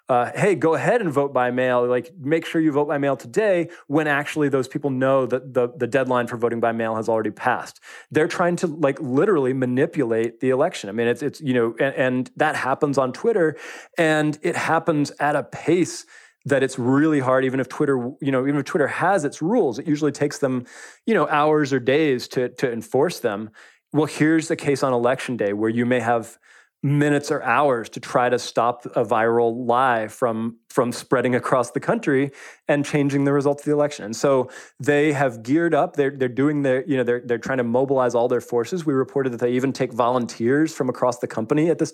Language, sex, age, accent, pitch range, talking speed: English, male, 20-39, American, 125-150 Hz, 220 wpm